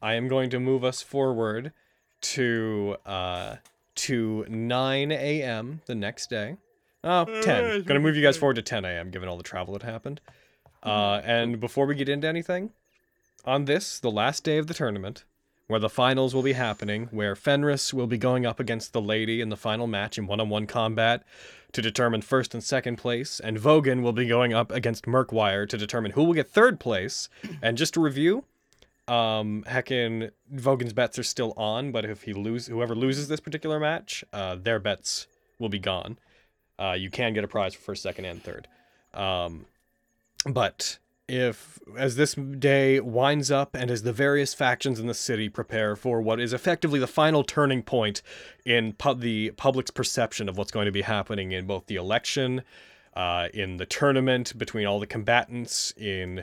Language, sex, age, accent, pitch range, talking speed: English, male, 20-39, American, 110-135 Hz, 185 wpm